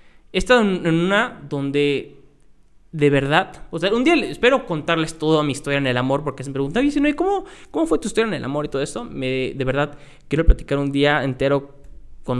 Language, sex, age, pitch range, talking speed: Spanish, male, 20-39, 130-170 Hz, 225 wpm